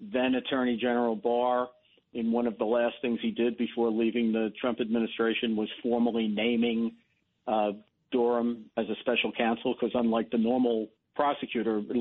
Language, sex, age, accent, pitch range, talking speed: English, male, 50-69, American, 115-140 Hz, 155 wpm